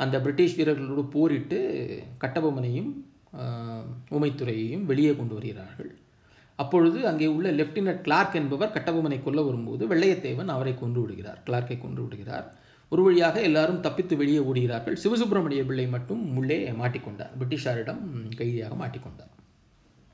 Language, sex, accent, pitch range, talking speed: Tamil, male, native, 120-160 Hz, 110 wpm